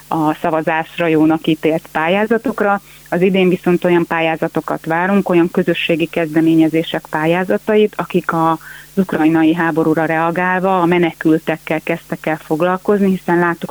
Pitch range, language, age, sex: 160-180 Hz, Hungarian, 30-49, female